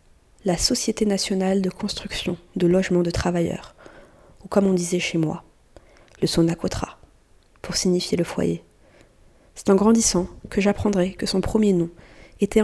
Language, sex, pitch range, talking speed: French, female, 175-205 Hz, 145 wpm